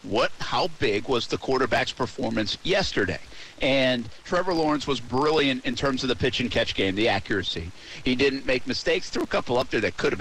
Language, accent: English, American